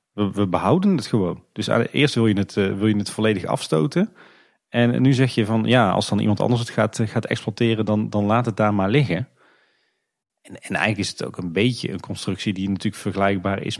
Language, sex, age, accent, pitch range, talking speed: Dutch, male, 30-49, Dutch, 100-120 Hz, 215 wpm